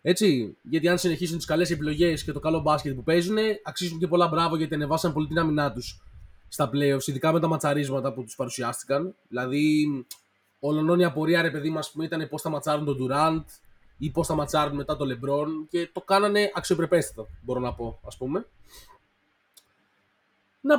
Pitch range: 145-175 Hz